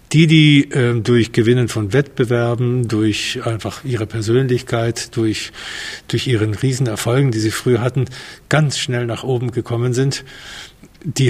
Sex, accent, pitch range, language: male, German, 115-130 Hz, German